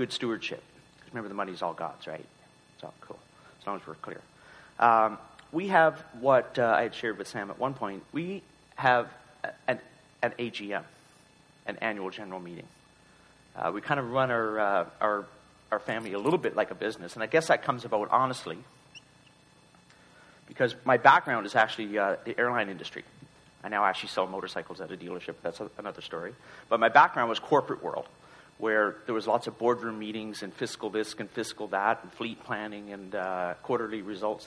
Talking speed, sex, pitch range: 190 wpm, male, 100-125 Hz